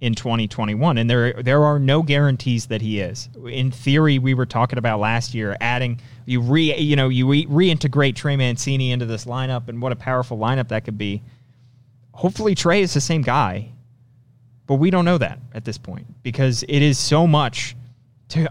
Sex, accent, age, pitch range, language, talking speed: male, American, 20-39, 115-135 Hz, English, 195 wpm